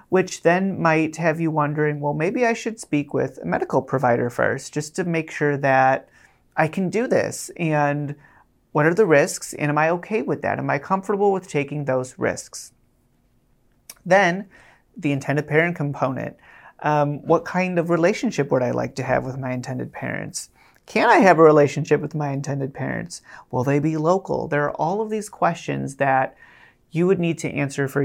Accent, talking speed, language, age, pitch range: American, 190 wpm, English, 30-49, 140-170 Hz